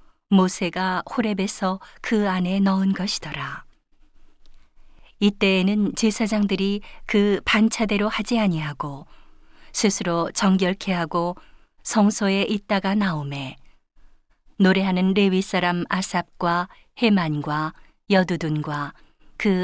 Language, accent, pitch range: Korean, native, 170-205 Hz